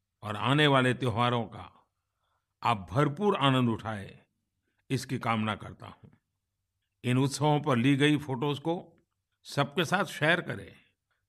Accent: native